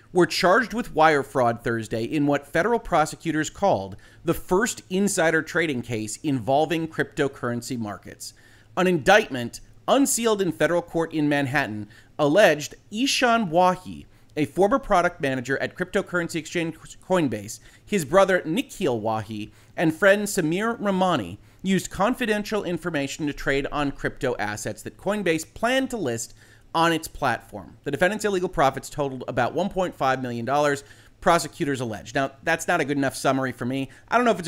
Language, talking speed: English, 150 wpm